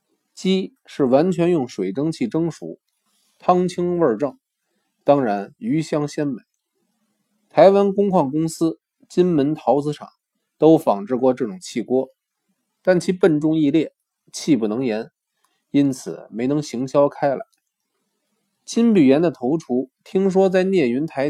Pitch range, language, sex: 135-190 Hz, Chinese, male